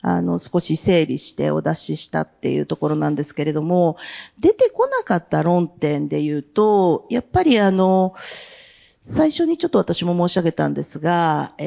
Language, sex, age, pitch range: Japanese, female, 40-59, 155-245 Hz